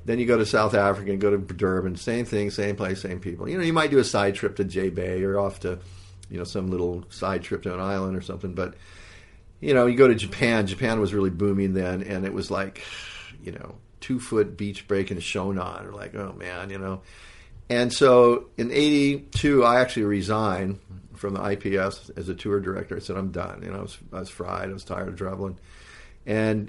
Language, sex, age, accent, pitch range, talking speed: English, male, 50-69, American, 95-110 Hz, 225 wpm